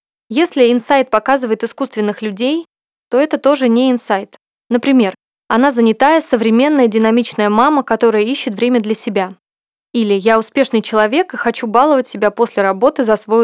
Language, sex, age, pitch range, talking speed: Russian, female, 20-39, 215-265 Hz, 145 wpm